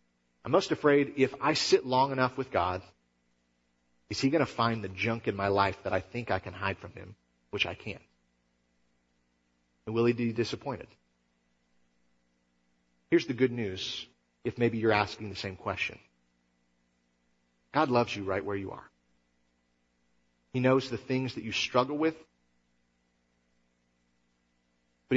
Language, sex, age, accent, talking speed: English, male, 40-59, American, 150 wpm